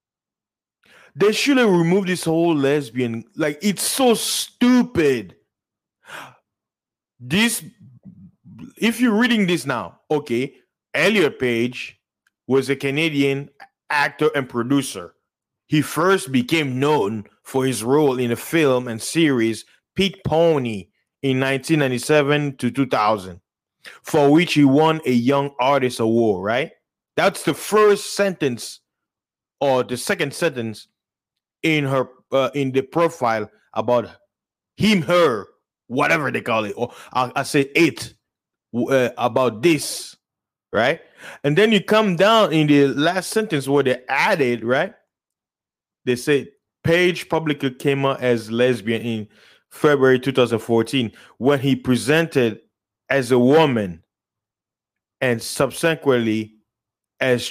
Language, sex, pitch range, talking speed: English, male, 120-160 Hz, 120 wpm